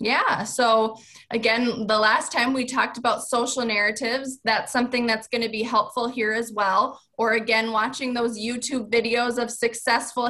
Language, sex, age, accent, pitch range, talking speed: English, female, 20-39, American, 200-240 Hz, 170 wpm